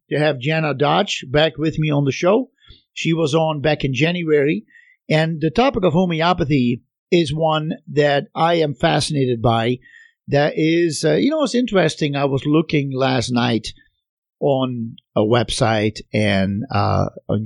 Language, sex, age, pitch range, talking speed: English, male, 50-69, 130-175 Hz, 160 wpm